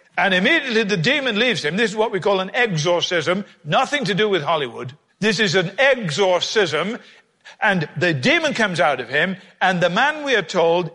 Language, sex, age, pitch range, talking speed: English, male, 50-69, 170-255 Hz, 190 wpm